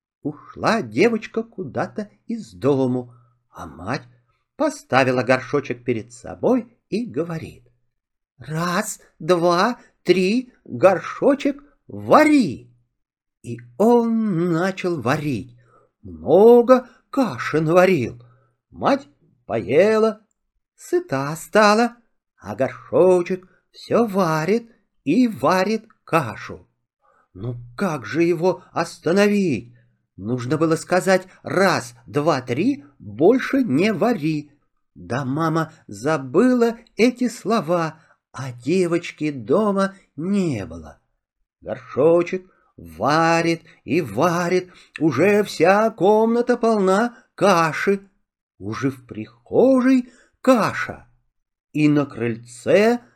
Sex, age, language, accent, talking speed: male, 50-69, Russian, native, 85 wpm